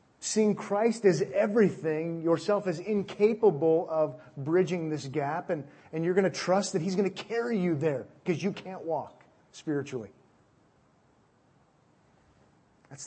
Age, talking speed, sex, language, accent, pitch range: 40-59, 140 wpm, male, English, American, 135-175 Hz